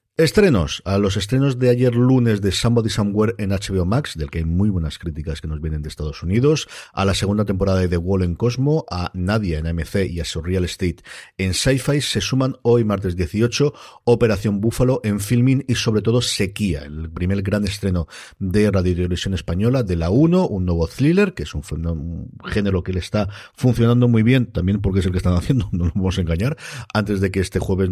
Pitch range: 90-115 Hz